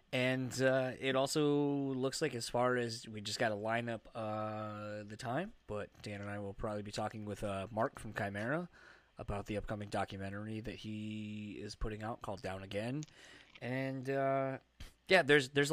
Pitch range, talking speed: 100-125 Hz, 185 wpm